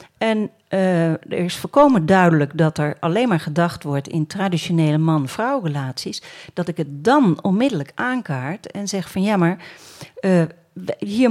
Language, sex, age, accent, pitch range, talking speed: Dutch, female, 40-59, Dutch, 165-220 Hz, 155 wpm